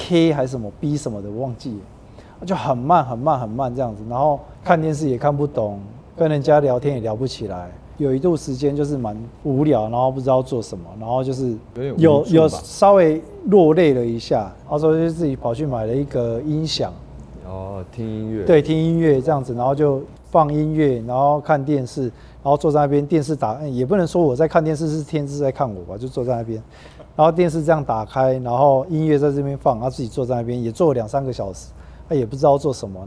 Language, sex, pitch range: Chinese, male, 115-155 Hz